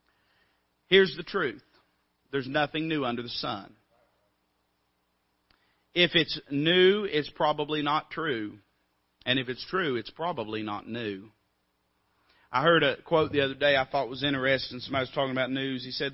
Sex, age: male, 40-59